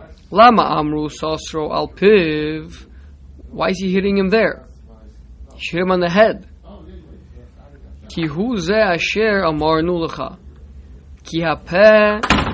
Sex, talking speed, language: male, 55 wpm, English